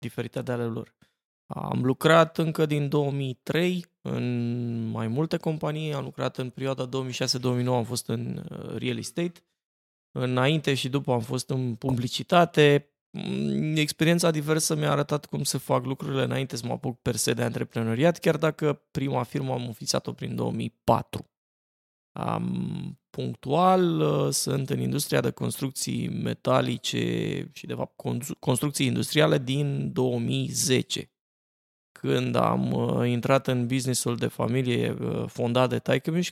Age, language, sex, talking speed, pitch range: 20-39, Romanian, male, 130 wpm, 115-150 Hz